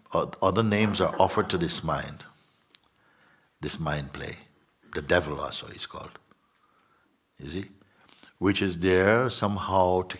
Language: English